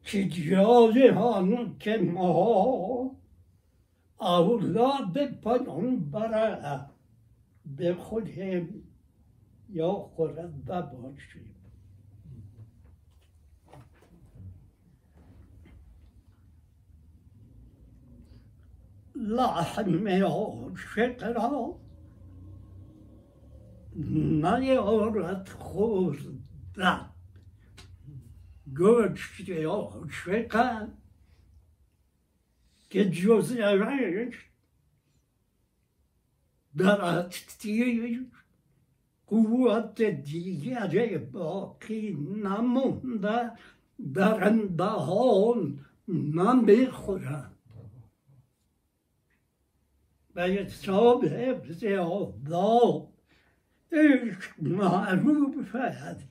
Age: 60-79